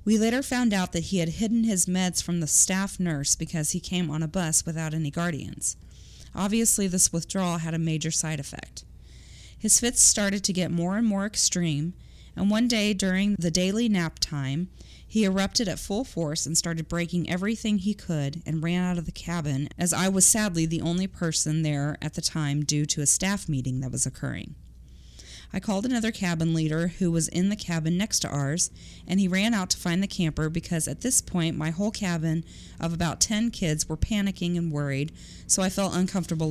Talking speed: 205 wpm